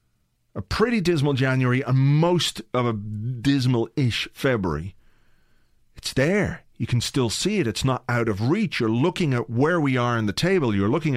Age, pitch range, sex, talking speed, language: 40-59, 110-140 Hz, male, 175 wpm, English